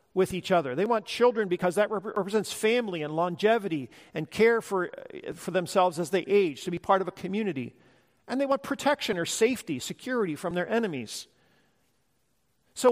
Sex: male